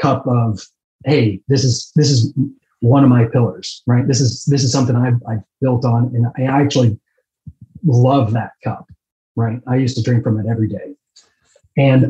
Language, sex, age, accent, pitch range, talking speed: English, male, 30-49, American, 115-135 Hz, 185 wpm